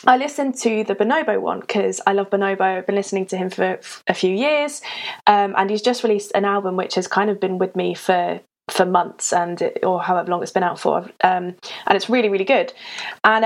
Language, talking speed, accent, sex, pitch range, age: English, 225 wpm, British, female, 195-245 Hz, 20-39